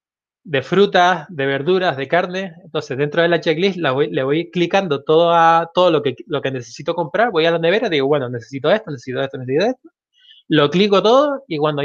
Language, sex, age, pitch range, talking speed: Spanish, male, 20-39, 135-180 Hz, 215 wpm